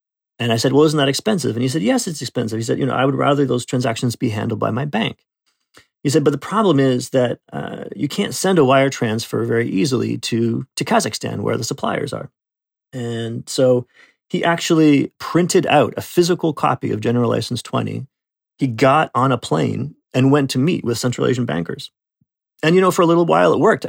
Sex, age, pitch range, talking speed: male, 40-59, 120-145 Hz, 215 wpm